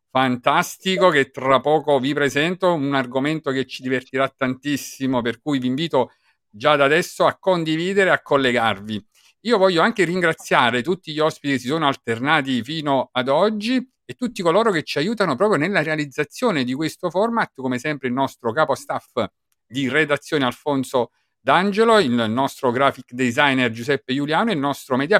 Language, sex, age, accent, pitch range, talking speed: Italian, male, 50-69, native, 130-175 Hz, 165 wpm